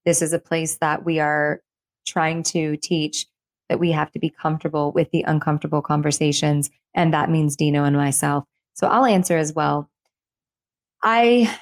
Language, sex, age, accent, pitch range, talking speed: English, female, 20-39, American, 160-185 Hz, 165 wpm